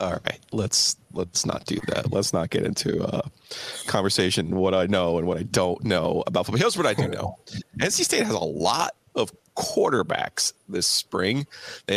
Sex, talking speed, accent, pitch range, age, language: male, 190 wpm, American, 90-100 Hz, 30-49, English